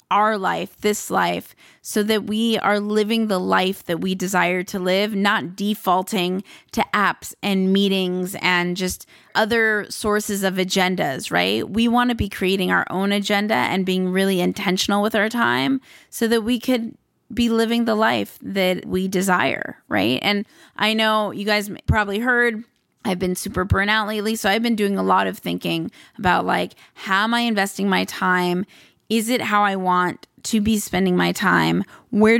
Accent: American